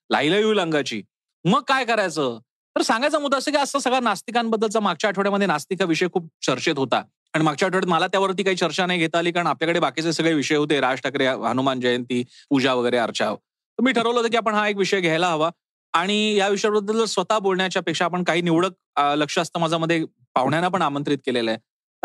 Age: 30-49